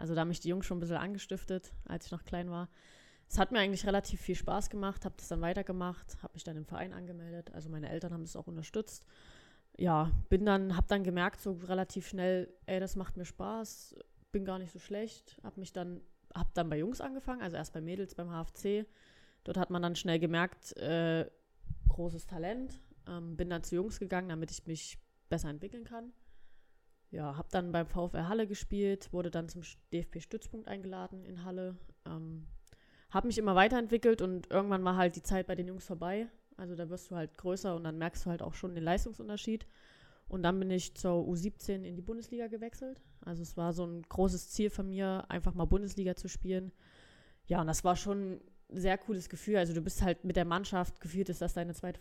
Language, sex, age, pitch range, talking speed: German, female, 20-39, 175-200 Hz, 210 wpm